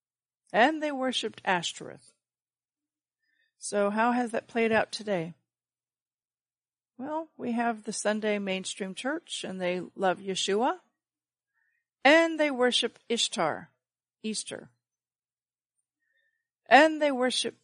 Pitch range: 190-240 Hz